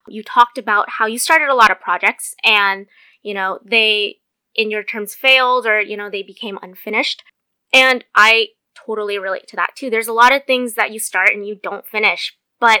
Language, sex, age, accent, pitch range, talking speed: English, female, 20-39, American, 210-255 Hz, 205 wpm